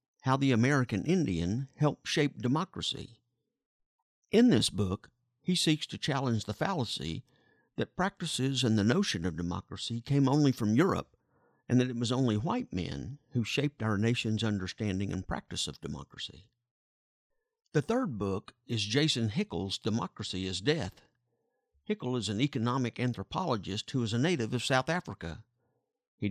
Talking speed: 150 wpm